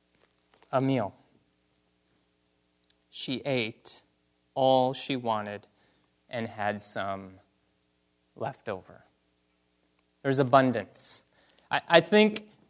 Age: 30-49